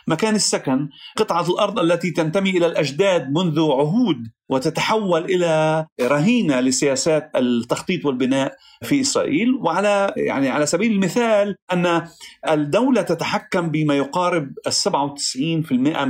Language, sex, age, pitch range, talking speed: Arabic, male, 40-59, 145-200 Hz, 110 wpm